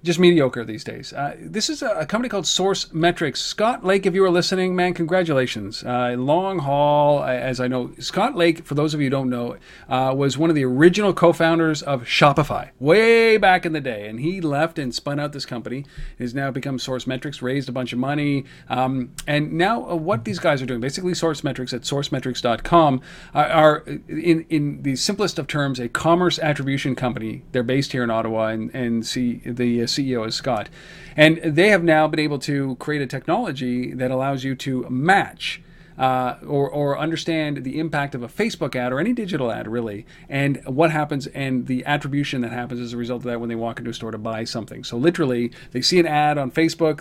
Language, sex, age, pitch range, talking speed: English, male, 40-59, 125-165 Hz, 210 wpm